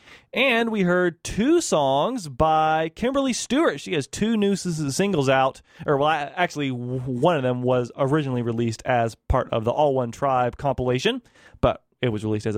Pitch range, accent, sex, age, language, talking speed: 130-160 Hz, American, male, 30-49, English, 170 wpm